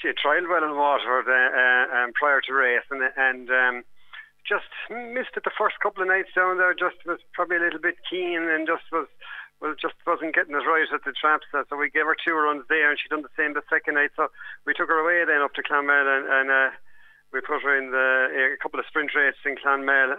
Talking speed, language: 245 wpm, English